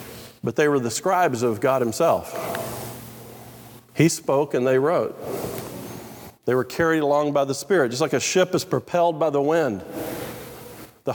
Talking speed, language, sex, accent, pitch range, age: 160 wpm, English, male, American, 125-185 Hz, 50-69